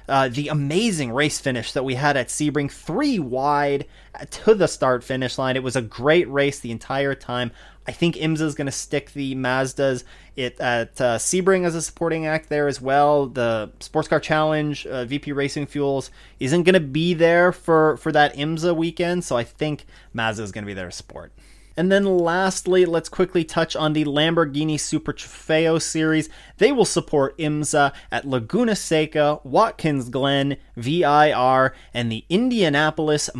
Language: English